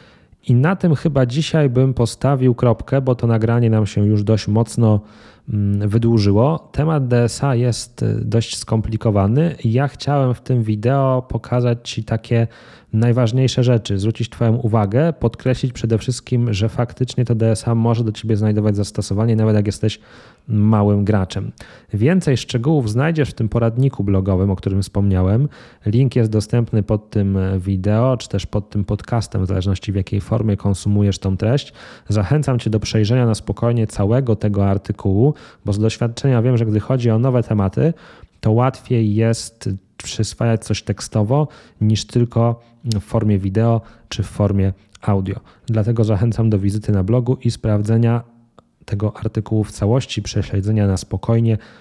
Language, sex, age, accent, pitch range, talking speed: Polish, male, 20-39, native, 105-125 Hz, 150 wpm